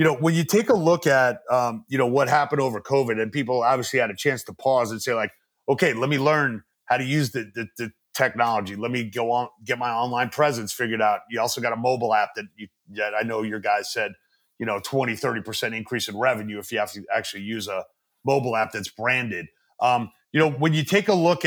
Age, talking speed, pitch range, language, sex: 30-49, 245 wpm, 110-145 Hz, English, male